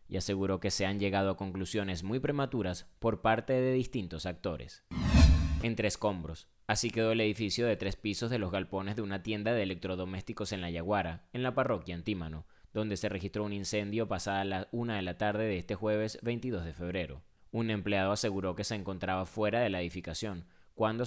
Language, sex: Spanish, male